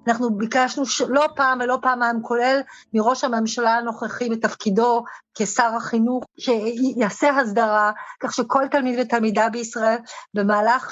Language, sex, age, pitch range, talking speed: Hebrew, female, 40-59, 220-260 Hz, 115 wpm